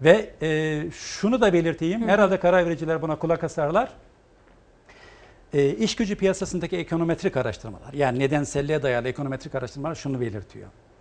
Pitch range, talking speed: 130-180 Hz, 120 wpm